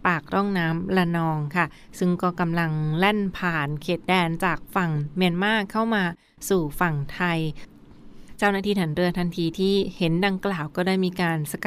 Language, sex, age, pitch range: Thai, female, 20-39, 165-190 Hz